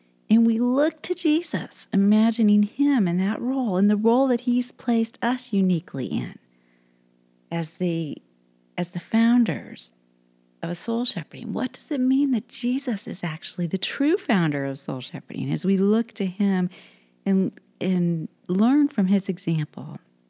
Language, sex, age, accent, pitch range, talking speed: English, female, 40-59, American, 155-230 Hz, 155 wpm